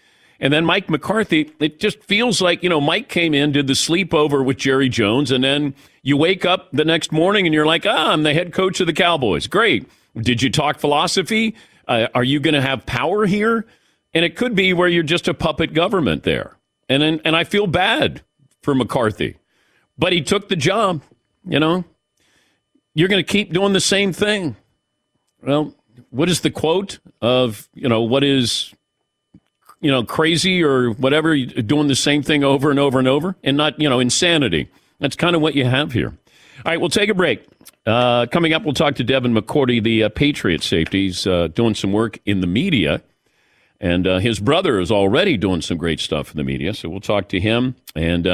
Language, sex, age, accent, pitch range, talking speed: English, male, 50-69, American, 120-170 Hz, 205 wpm